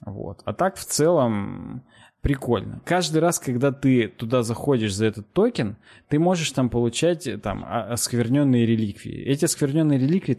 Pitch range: 110-140 Hz